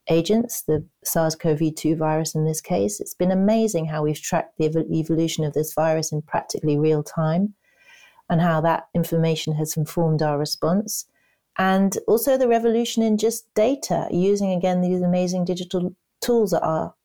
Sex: female